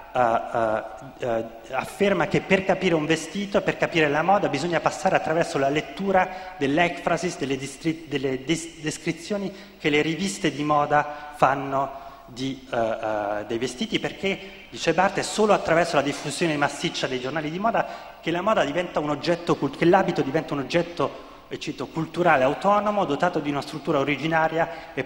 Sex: male